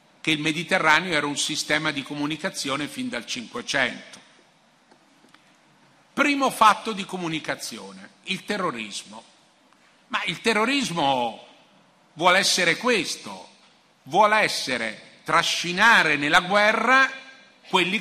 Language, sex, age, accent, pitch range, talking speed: Italian, male, 50-69, native, 160-235 Hz, 95 wpm